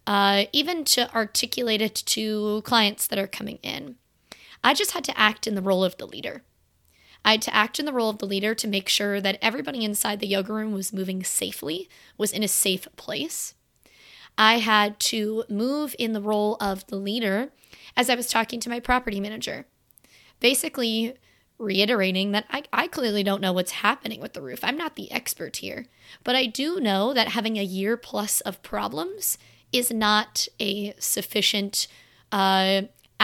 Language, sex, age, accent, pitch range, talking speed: English, female, 20-39, American, 200-245 Hz, 180 wpm